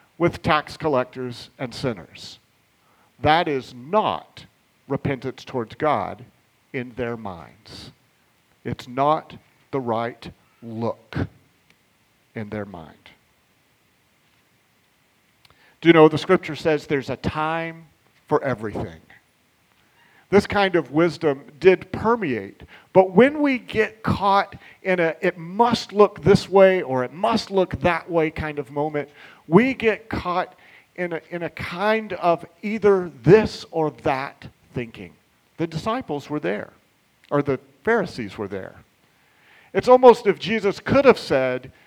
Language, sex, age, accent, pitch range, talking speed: English, male, 50-69, American, 125-185 Hz, 130 wpm